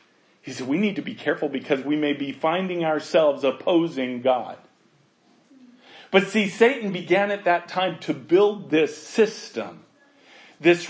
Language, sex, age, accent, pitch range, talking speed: English, male, 40-59, American, 165-210 Hz, 150 wpm